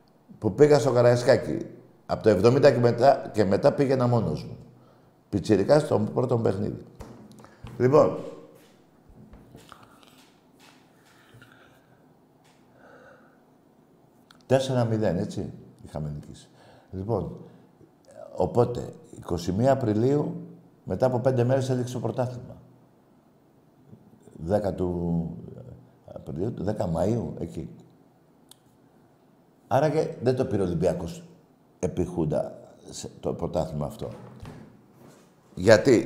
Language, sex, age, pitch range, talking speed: Greek, male, 60-79, 110-135 Hz, 90 wpm